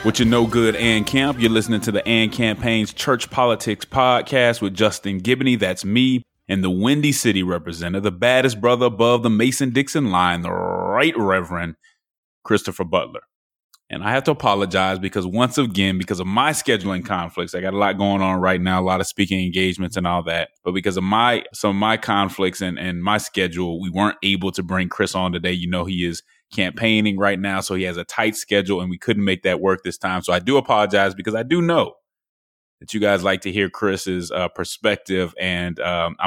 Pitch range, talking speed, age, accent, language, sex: 90-105 Hz, 210 wpm, 20-39, American, English, male